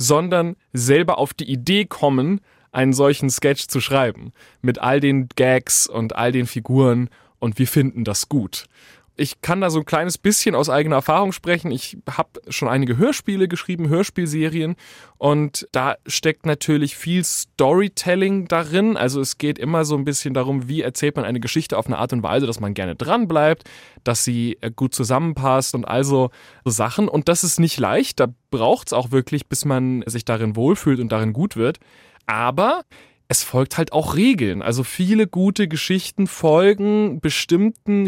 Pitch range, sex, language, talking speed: 130-175 Hz, male, German, 175 wpm